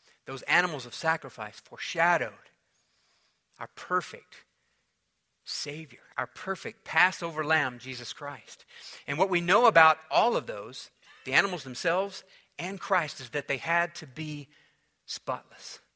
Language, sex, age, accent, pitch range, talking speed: English, male, 50-69, American, 130-170 Hz, 130 wpm